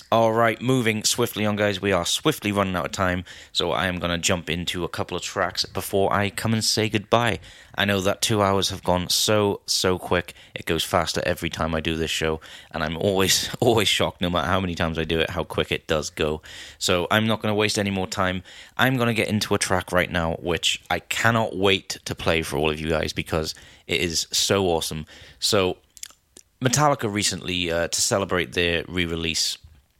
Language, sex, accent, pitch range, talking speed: English, male, British, 85-105 Hz, 220 wpm